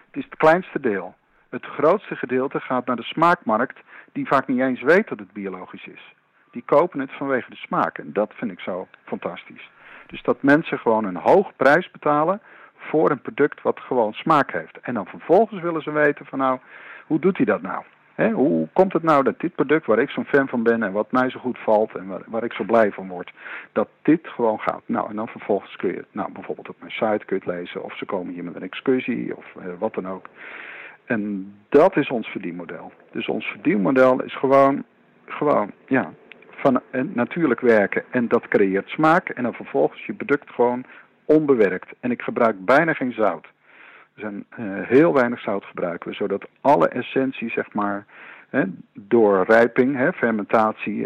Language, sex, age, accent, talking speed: Dutch, male, 50-69, Dutch, 200 wpm